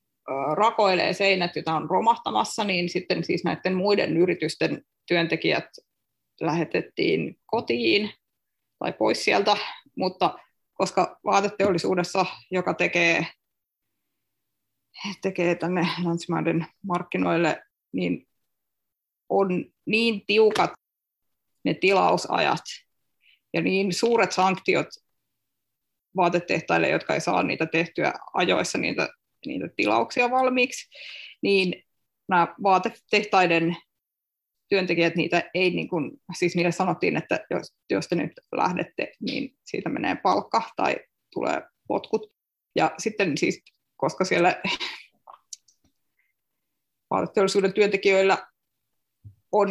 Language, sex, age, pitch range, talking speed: Finnish, female, 20-39, 175-210 Hz, 95 wpm